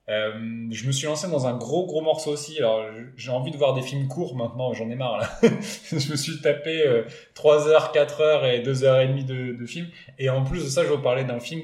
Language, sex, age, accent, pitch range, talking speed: French, male, 20-39, French, 110-145 Hz, 255 wpm